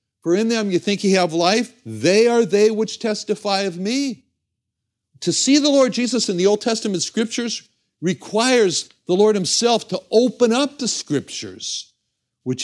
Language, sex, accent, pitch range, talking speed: English, male, American, 130-185 Hz, 165 wpm